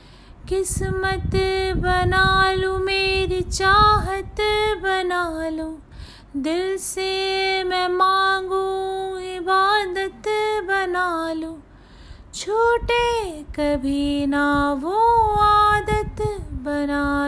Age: 30-49